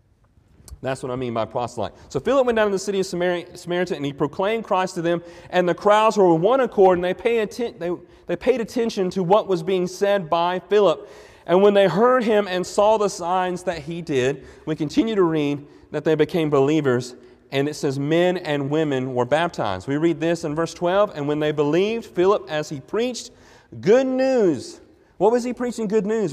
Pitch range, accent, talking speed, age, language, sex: 160-205 Hz, American, 215 wpm, 40-59, English, male